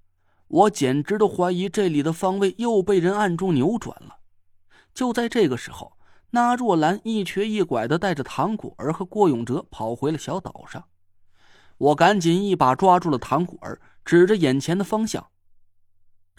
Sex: male